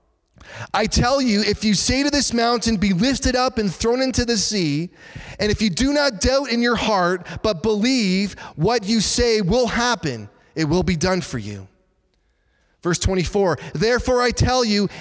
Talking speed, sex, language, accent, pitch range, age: 180 wpm, male, English, American, 170-230 Hz, 30-49